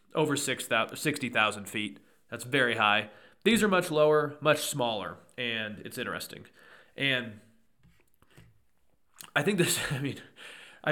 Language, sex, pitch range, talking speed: English, male, 115-135 Hz, 110 wpm